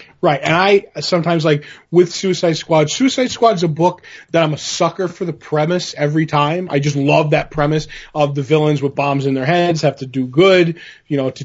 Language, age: English, 20-39